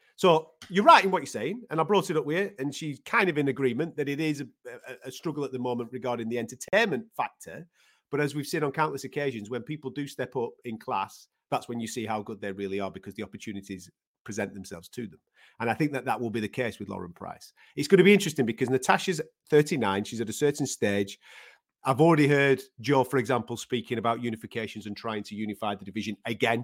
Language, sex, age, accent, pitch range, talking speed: English, male, 40-59, British, 115-155 Hz, 235 wpm